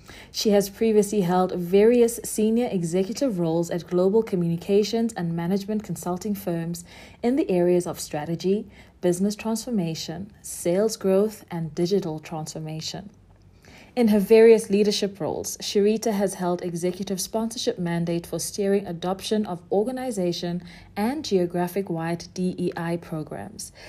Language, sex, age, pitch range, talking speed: English, female, 40-59, 170-205 Hz, 120 wpm